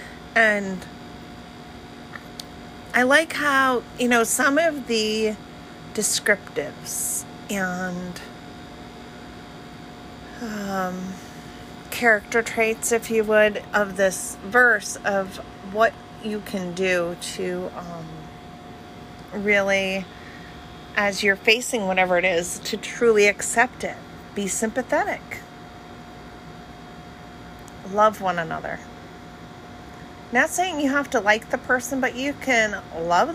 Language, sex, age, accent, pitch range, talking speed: English, female, 40-59, American, 155-230 Hz, 100 wpm